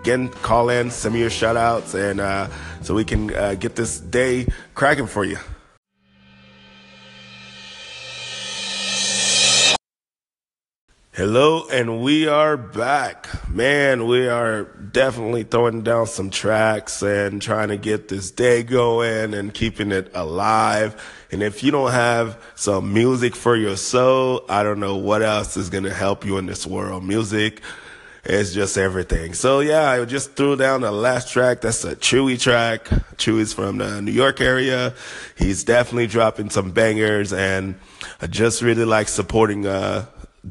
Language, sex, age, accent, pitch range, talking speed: English, male, 30-49, American, 100-120 Hz, 150 wpm